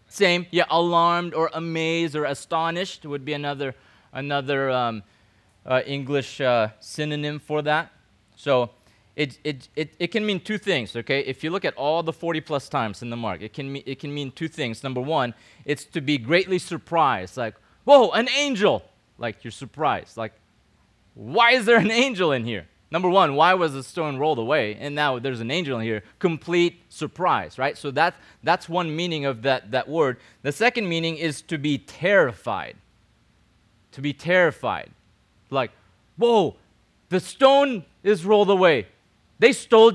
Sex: male